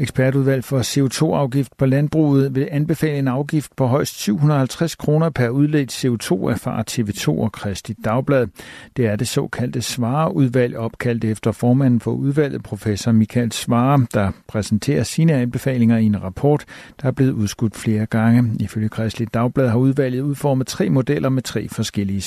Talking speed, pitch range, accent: 155 wpm, 115-140 Hz, native